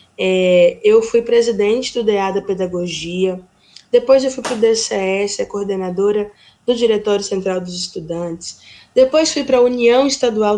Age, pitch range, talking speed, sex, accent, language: 10-29, 205-260 Hz, 155 wpm, female, Brazilian, Portuguese